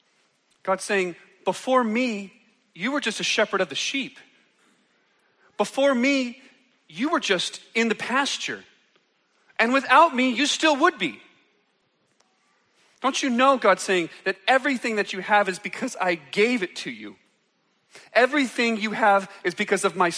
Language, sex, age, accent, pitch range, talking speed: English, male, 40-59, American, 180-240 Hz, 150 wpm